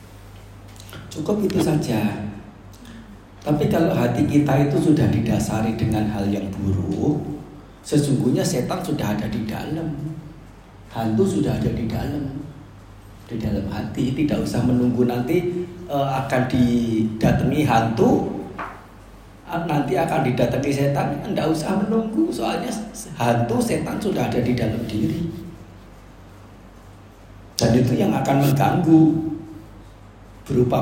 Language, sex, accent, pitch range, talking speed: Indonesian, male, native, 105-145 Hz, 110 wpm